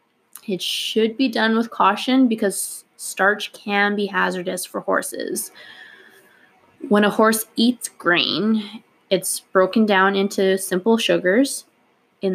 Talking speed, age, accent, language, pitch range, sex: 120 wpm, 20-39, American, English, 185-225 Hz, female